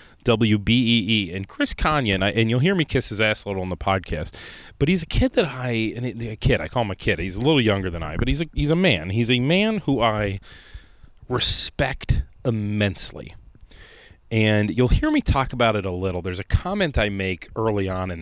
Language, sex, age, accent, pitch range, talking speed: English, male, 30-49, American, 95-125 Hz, 235 wpm